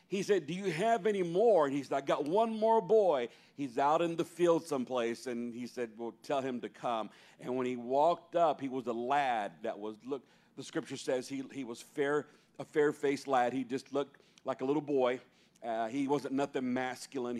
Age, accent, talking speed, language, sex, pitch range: 50-69, American, 215 wpm, English, male, 120-155 Hz